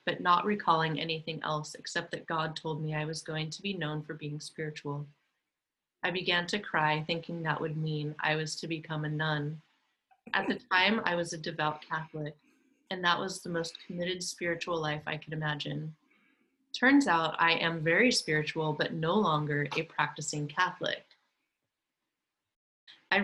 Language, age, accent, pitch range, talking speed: English, 20-39, American, 155-180 Hz, 170 wpm